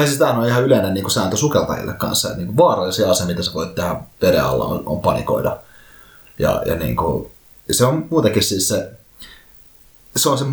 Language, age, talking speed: Finnish, 30-49, 180 wpm